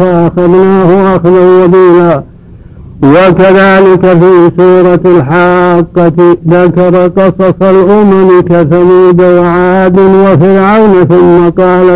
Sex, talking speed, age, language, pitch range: male, 60 wpm, 60-79, Arabic, 175-190 Hz